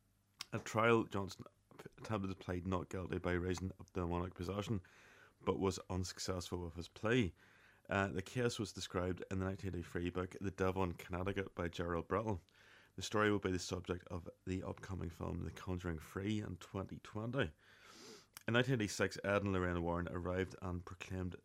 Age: 30-49